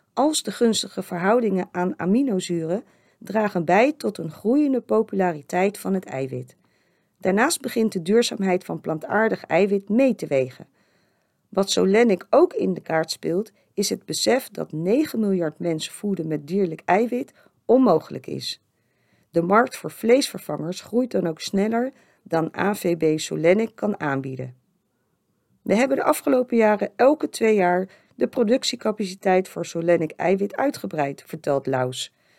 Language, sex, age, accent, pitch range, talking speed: Dutch, female, 40-59, Dutch, 170-230 Hz, 135 wpm